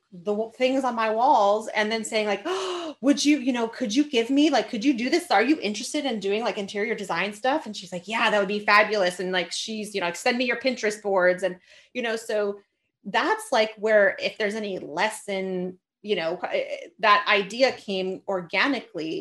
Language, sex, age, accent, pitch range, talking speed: English, female, 30-49, American, 180-225 Hz, 210 wpm